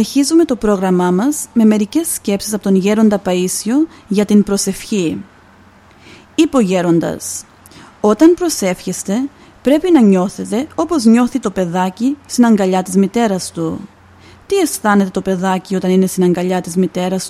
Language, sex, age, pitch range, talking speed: Greek, female, 30-49, 185-245 Hz, 135 wpm